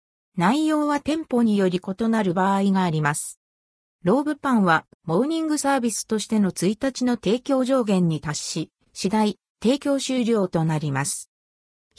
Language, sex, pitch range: Japanese, female, 165-265 Hz